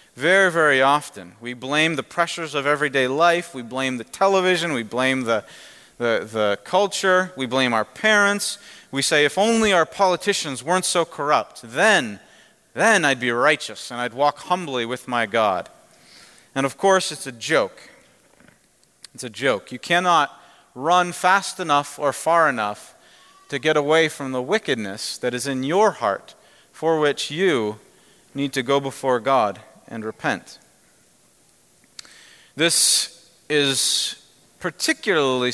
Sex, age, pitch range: male, 40-59, 130-175 Hz